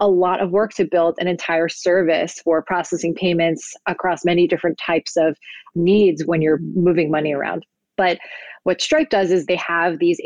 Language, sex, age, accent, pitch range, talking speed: English, female, 30-49, American, 165-190 Hz, 180 wpm